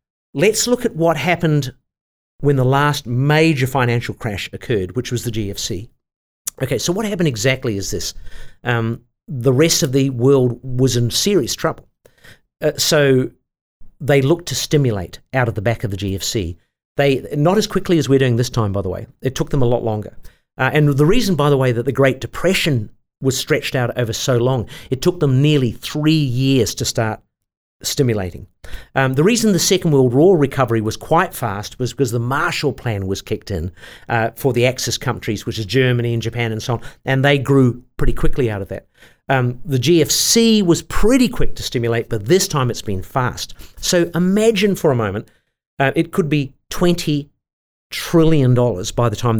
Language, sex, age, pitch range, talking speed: English, male, 50-69, 115-150 Hz, 195 wpm